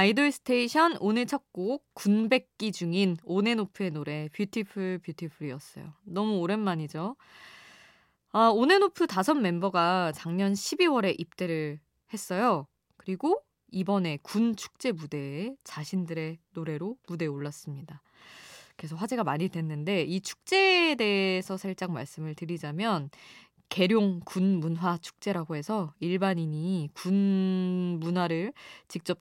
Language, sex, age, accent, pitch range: Korean, female, 20-39, native, 165-220 Hz